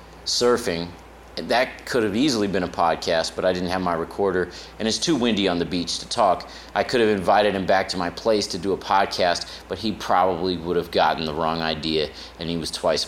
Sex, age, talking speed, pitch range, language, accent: male, 30-49, 225 wpm, 85-100 Hz, English, American